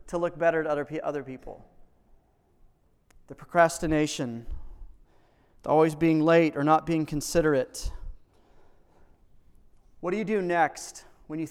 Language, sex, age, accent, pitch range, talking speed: English, male, 30-49, American, 140-170 Hz, 120 wpm